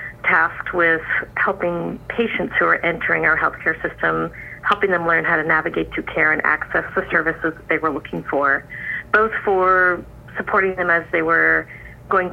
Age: 40-59